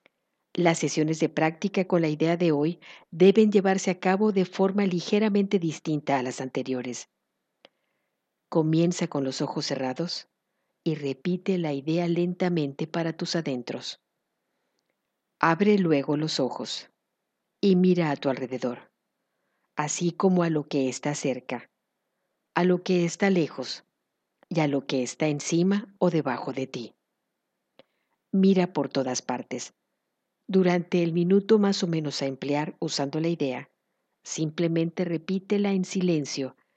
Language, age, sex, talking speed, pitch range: Spanish, 50-69, female, 135 wpm, 145-185 Hz